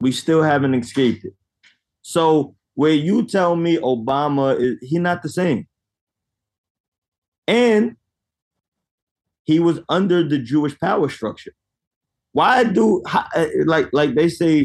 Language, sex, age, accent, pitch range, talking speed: English, male, 30-49, American, 125-185 Hz, 120 wpm